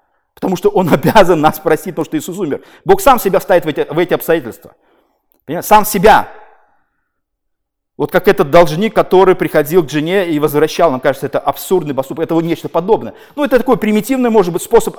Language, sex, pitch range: Russian, male, 170-235 Hz